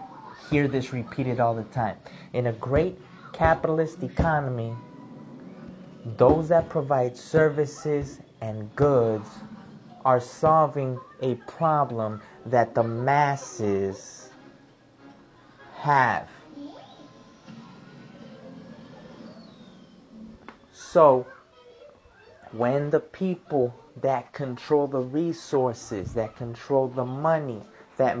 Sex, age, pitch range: male, 30-49, 120-150 Hz